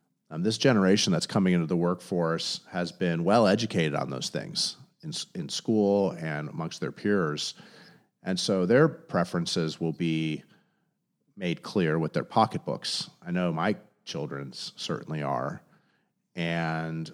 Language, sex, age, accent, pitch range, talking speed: English, male, 40-59, American, 80-100 Hz, 140 wpm